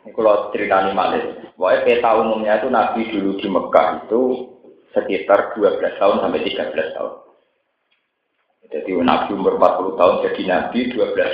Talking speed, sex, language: 145 wpm, male, Indonesian